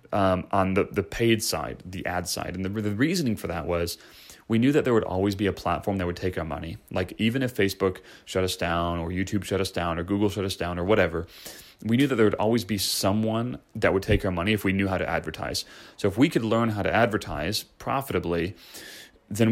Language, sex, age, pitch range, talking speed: English, male, 30-49, 90-105 Hz, 240 wpm